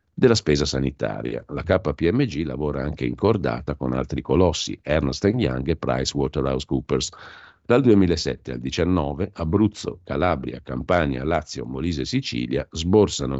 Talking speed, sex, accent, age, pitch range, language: 125 wpm, male, native, 50-69, 65-85 Hz, Italian